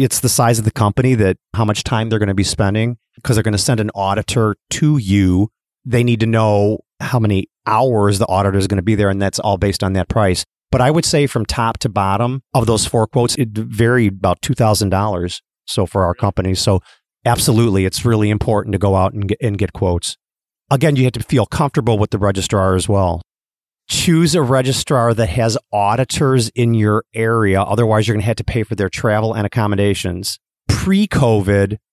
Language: English